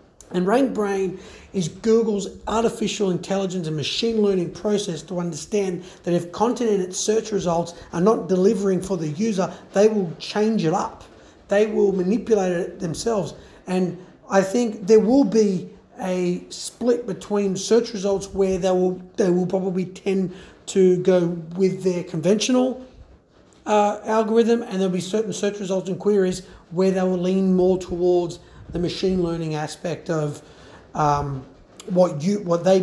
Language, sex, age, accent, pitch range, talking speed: English, male, 30-49, Australian, 175-215 Hz, 155 wpm